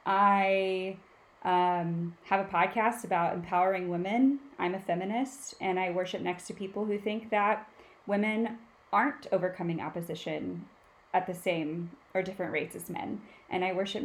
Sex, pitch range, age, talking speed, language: female, 185-225 Hz, 20-39, 150 wpm, English